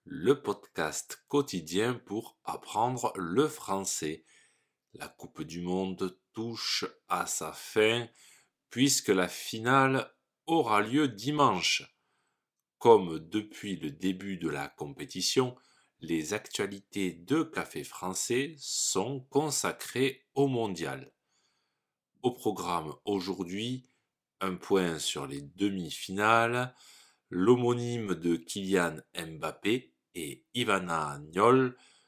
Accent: French